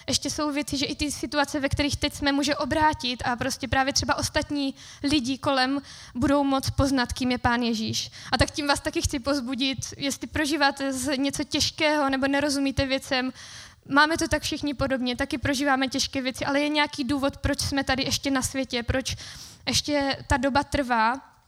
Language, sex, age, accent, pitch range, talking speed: Czech, female, 20-39, native, 265-290 Hz, 185 wpm